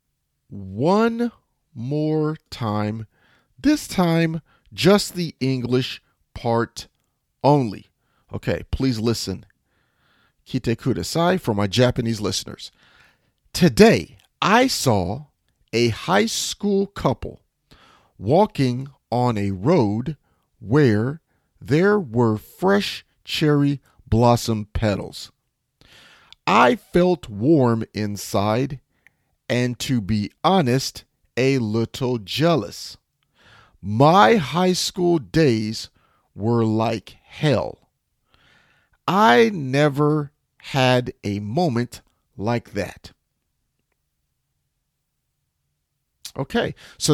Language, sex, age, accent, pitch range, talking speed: English, male, 40-59, American, 110-160 Hz, 80 wpm